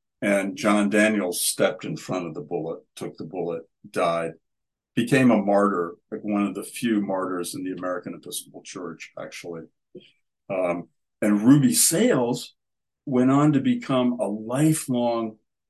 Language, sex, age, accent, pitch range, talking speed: English, male, 60-79, American, 95-125 Hz, 145 wpm